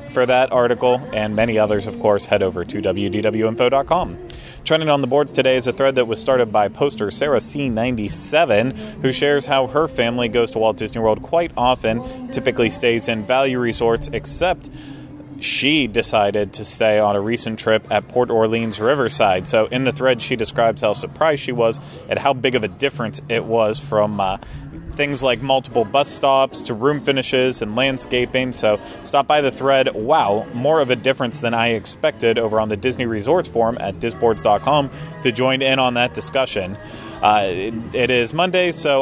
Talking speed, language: 185 wpm, English